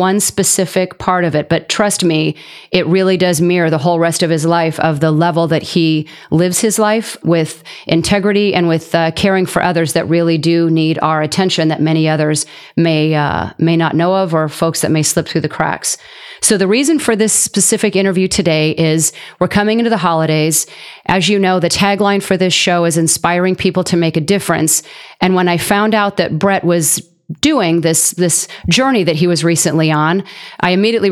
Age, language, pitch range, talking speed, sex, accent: 40-59, English, 165-195 Hz, 200 wpm, female, American